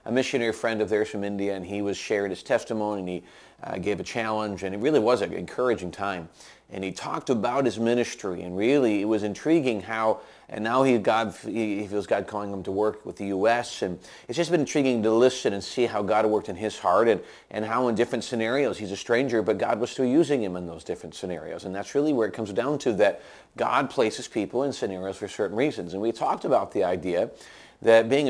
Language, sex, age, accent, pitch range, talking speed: English, male, 40-59, American, 105-130 Hz, 235 wpm